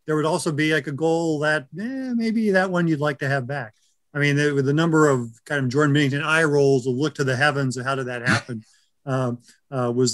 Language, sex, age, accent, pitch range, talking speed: English, male, 40-59, American, 150-195 Hz, 250 wpm